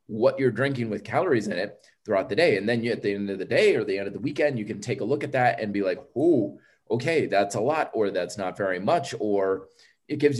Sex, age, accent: male, 30-49, American